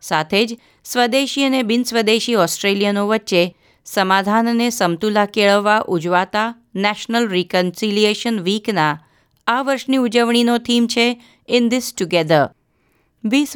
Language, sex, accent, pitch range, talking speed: Gujarati, female, native, 180-235 Hz, 105 wpm